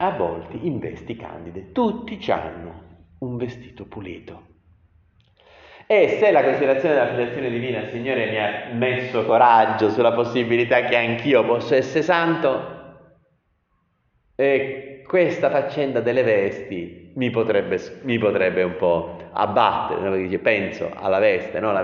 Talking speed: 125 wpm